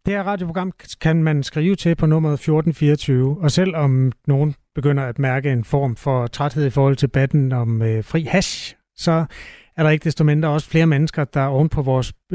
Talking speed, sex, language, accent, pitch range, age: 200 wpm, male, Danish, native, 135-165 Hz, 30-49